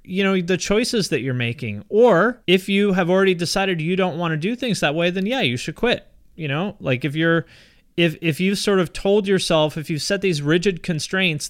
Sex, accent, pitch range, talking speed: male, American, 155-190 Hz, 235 wpm